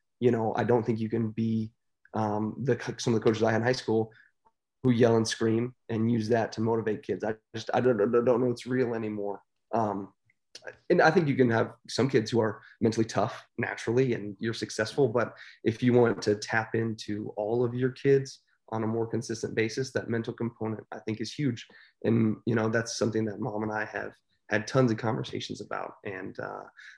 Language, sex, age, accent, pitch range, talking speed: English, male, 30-49, American, 110-125 Hz, 215 wpm